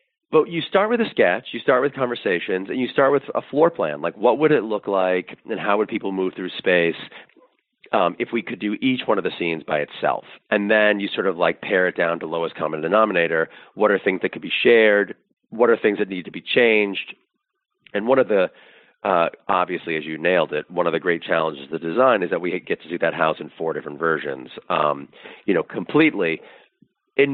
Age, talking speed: 40-59, 230 wpm